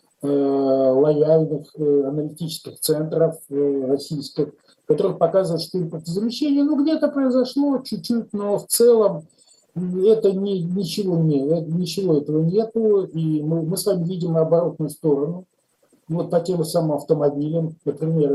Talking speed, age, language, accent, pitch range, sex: 120 wpm, 50-69, Russian, native, 145-180 Hz, male